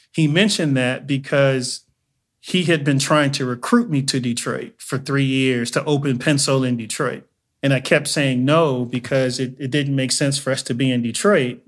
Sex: male